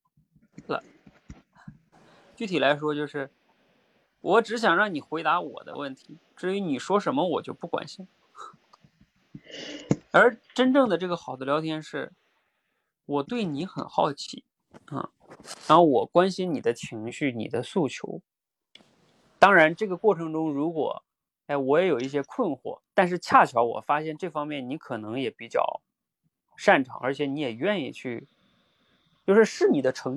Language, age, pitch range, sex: Chinese, 30-49, 130-185 Hz, male